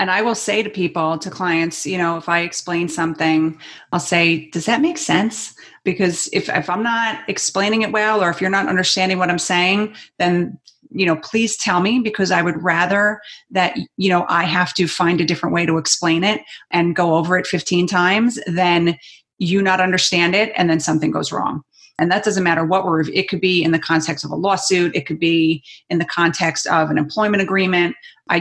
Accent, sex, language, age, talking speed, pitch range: American, female, English, 30-49, 215 wpm, 165-190 Hz